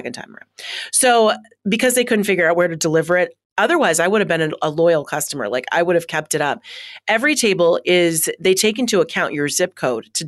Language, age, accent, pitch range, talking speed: English, 30-49, American, 165-215 Hz, 220 wpm